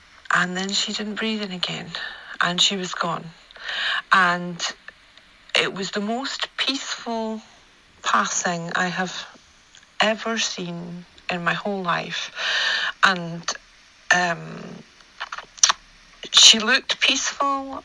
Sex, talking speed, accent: female, 105 wpm, British